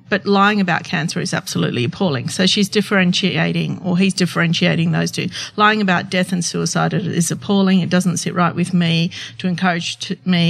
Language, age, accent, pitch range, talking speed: English, 50-69, Australian, 165-190 Hz, 175 wpm